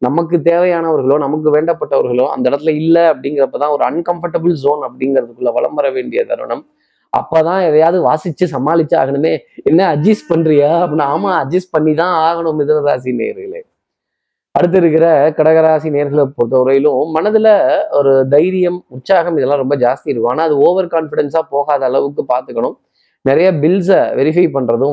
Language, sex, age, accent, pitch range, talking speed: Tamil, male, 20-39, native, 145-175 Hz, 125 wpm